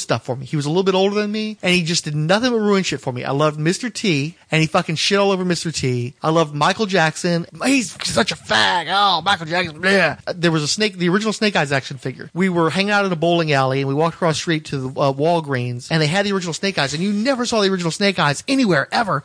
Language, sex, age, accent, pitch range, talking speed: English, male, 30-49, American, 150-190 Hz, 280 wpm